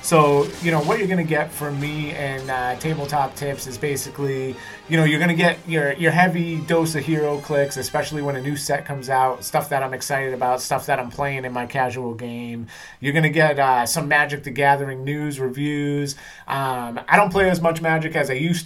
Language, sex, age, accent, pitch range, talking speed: English, male, 30-49, American, 135-160 Hz, 225 wpm